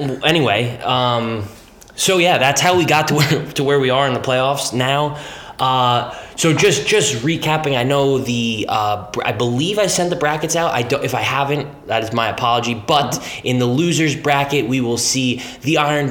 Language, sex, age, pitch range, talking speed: English, male, 10-29, 110-140 Hz, 195 wpm